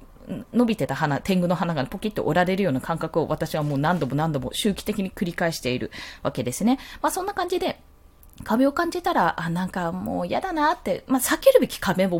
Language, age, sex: Japanese, 20-39, female